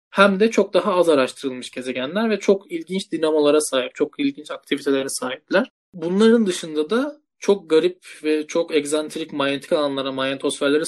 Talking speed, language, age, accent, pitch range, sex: 150 wpm, Turkish, 20-39, native, 135-175 Hz, male